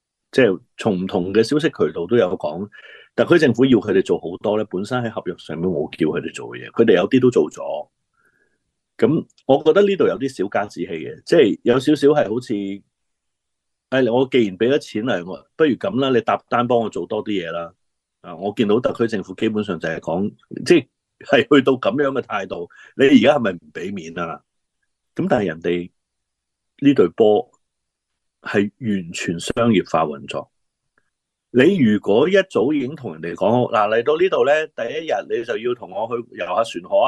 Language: Chinese